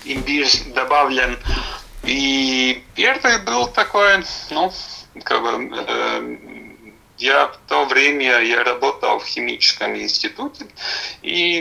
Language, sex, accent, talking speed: Russian, male, native, 100 wpm